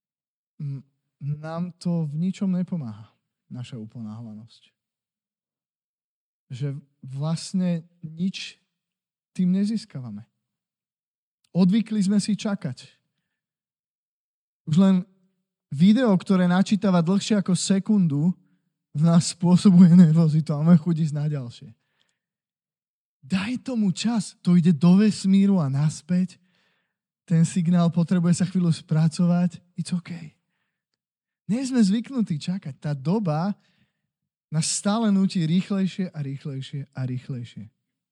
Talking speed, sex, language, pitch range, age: 105 wpm, male, Slovak, 145-195 Hz, 20-39